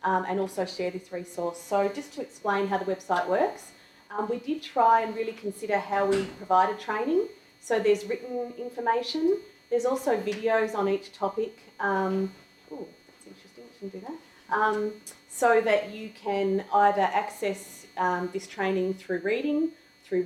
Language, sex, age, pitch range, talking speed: English, female, 30-49, 180-210 Hz, 165 wpm